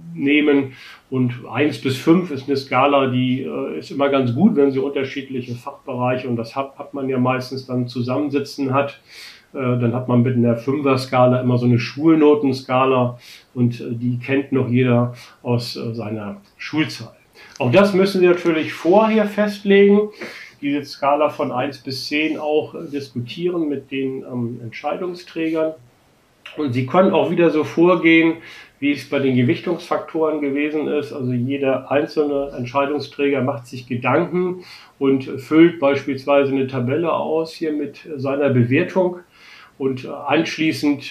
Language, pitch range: German, 125-150 Hz